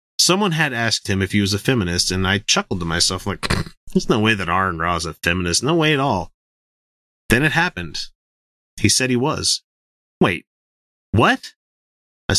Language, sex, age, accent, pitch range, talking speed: English, male, 30-49, American, 95-130 Hz, 185 wpm